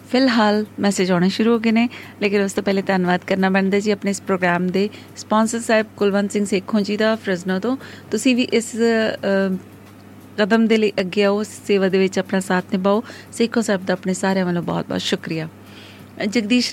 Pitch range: 185-215 Hz